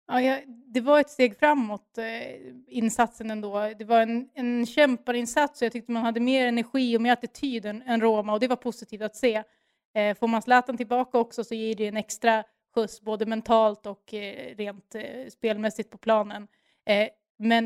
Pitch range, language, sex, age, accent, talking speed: 215-245 Hz, English, female, 30-49, Swedish, 175 wpm